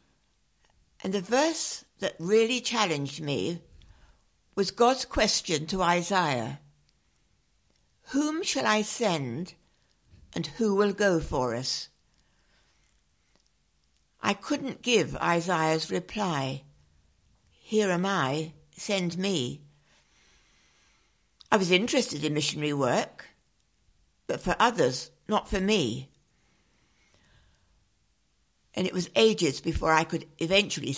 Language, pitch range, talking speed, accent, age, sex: English, 135-200 Hz, 100 wpm, British, 60-79, female